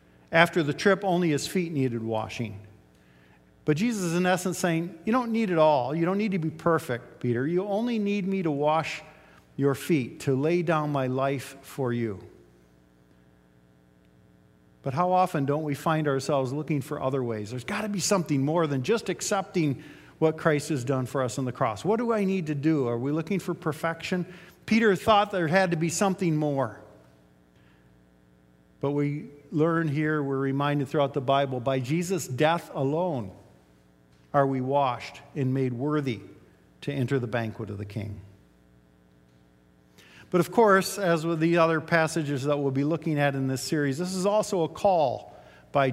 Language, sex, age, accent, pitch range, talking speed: English, male, 50-69, American, 120-175 Hz, 180 wpm